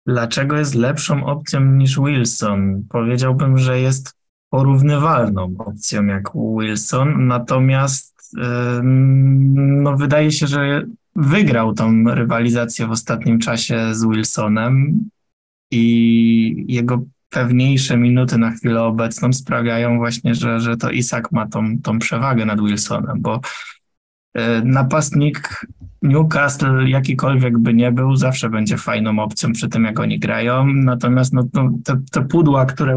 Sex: male